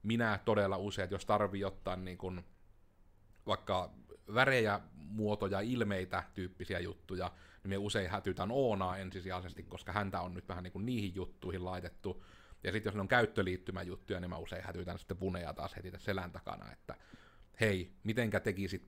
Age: 30-49